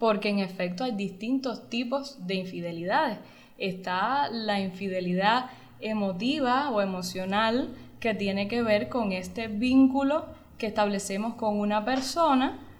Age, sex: 10-29, female